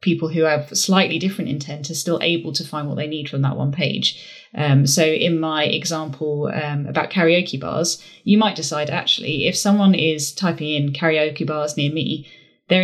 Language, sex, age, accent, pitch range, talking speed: English, female, 10-29, British, 145-175 Hz, 190 wpm